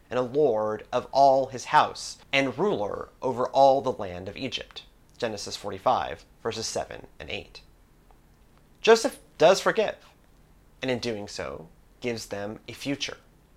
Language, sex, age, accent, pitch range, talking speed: English, male, 30-49, American, 120-150 Hz, 140 wpm